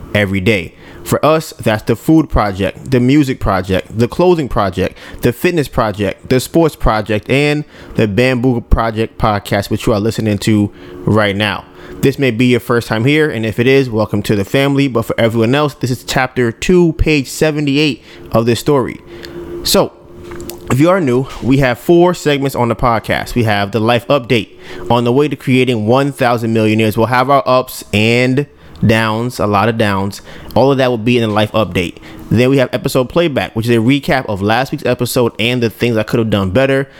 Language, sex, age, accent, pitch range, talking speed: English, male, 20-39, American, 105-130 Hz, 200 wpm